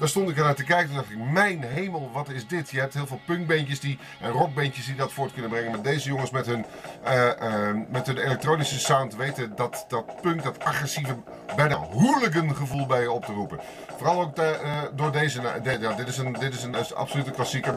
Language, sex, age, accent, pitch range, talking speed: Dutch, male, 30-49, Dutch, 130-155 Hz, 245 wpm